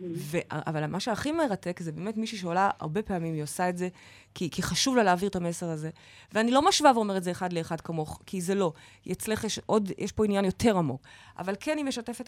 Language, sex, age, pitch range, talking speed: Hebrew, female, 30-49, 185-260 Hz, 225 wpm